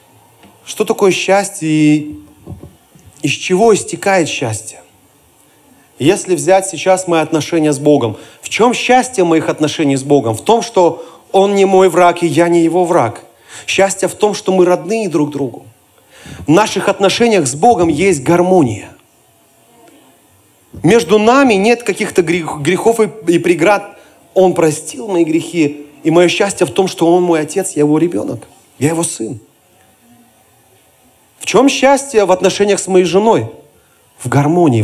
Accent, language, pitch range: native, Russian, 145-185 Hz